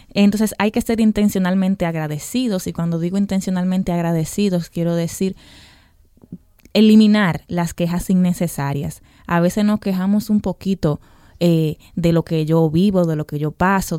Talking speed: 145 wpm